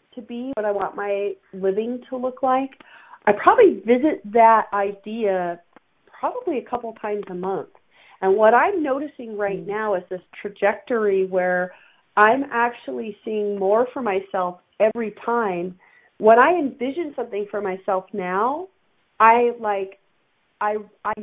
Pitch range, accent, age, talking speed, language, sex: 200-255 Hz, American, 40-59, 140 wpm, English, female